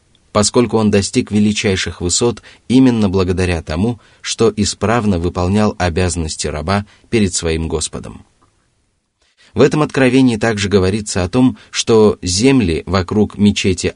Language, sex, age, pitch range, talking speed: Russian, male, 30-49, 90-105 Hz, 115 wpm